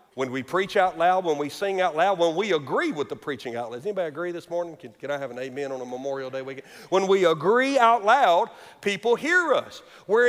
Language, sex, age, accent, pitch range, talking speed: English, male, 50-69, American, 190-270 Hz, 250 wpm